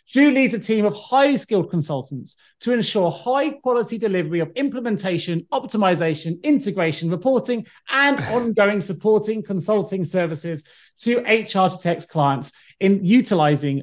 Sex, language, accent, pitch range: male, English, British, 165-240 Hz